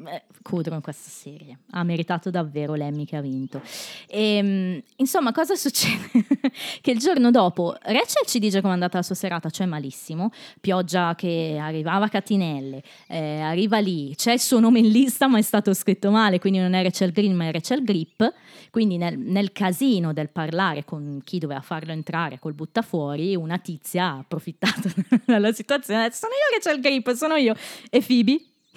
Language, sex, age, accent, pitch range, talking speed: Italian, female, 20-39, native, 165-230 Hz, 175 wpm